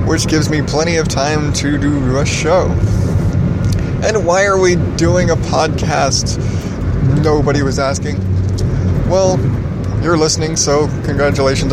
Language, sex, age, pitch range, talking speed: English, male, 20-39, 120-135 Hz, 130 wpm